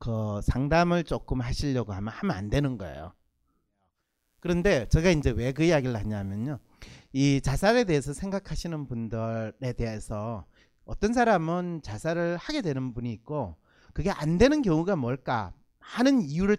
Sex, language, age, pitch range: male, Korean, 40-59, 125-205 Hz